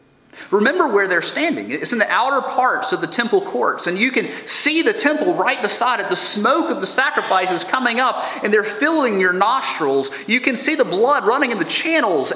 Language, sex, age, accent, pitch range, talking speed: English, male, 30-49, American, 150-245 Hz, 210 wpm